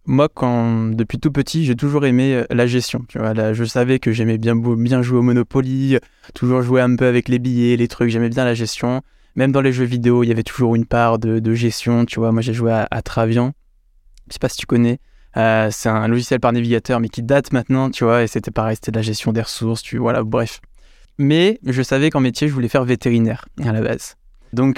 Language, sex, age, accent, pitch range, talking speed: French, male, 20-39, French, 115-130 Hz, 240 wpm